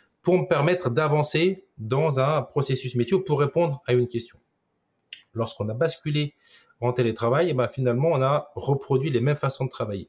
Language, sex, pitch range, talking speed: French, male, 120-160 Hz, 170 wpm